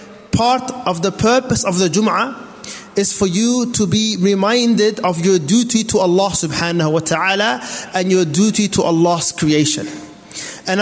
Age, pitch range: 30-49, 180-240 Hz